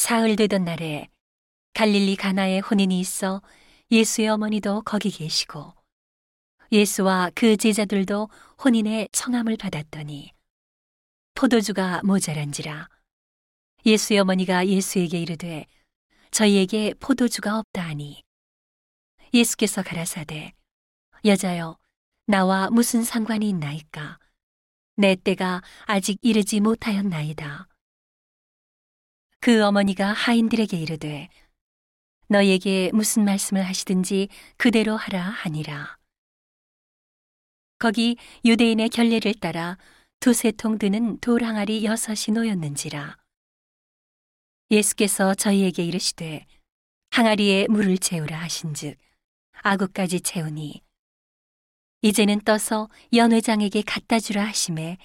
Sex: female